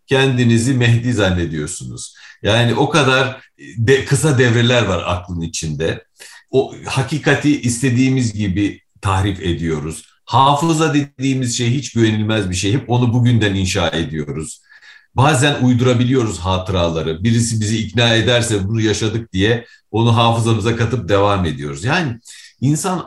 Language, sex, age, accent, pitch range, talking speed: Turkish, male, 50-69, native, 100-130 Hz, 120 wpm